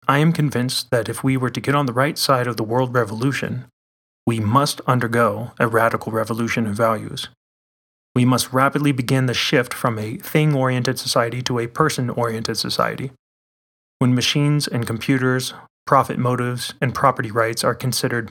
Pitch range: 110-135 Hz